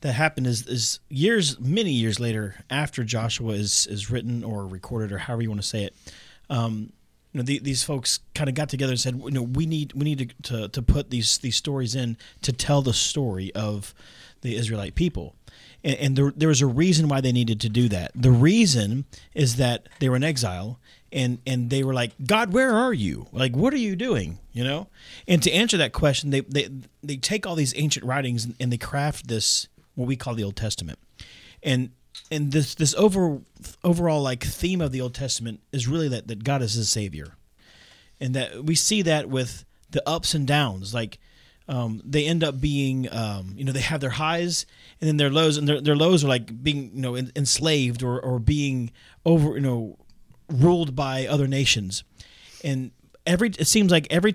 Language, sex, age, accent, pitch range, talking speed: English, male, 30-49, American, 120-150 Hz, 210 wpm